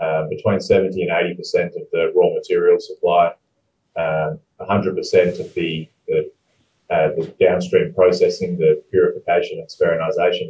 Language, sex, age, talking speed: English, male, 30-49, 120 wpm